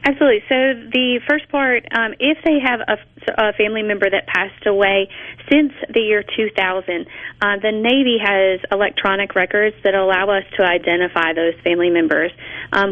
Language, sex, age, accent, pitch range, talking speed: English, female, 30-49, American, 175-210 Hz, 165 wpm